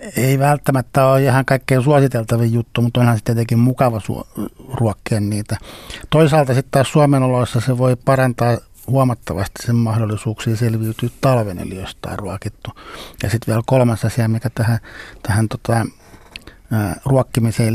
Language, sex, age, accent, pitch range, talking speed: Finnish, male, 60-79, native, 105-120 Hz, 140 wpm